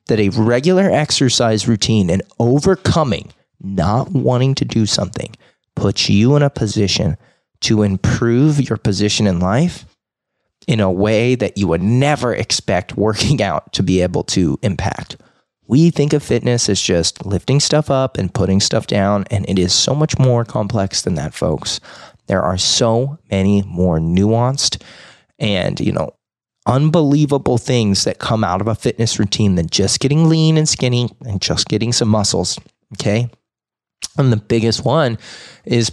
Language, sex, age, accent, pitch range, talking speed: English, male, 30-49, American, 100-130 Hz, 160 wpm